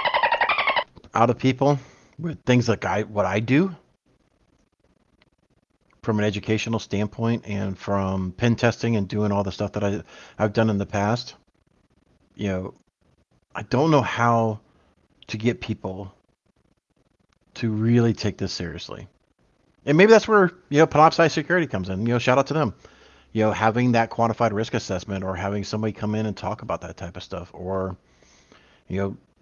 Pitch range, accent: 95-115 Hz, American